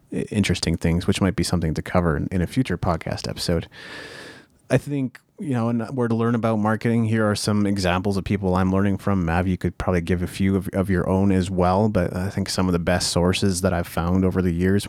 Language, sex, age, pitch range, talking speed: English, male, 30-49, 85-100 Hz, 240 wpm